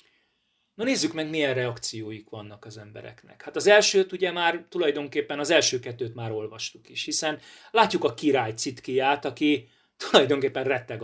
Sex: male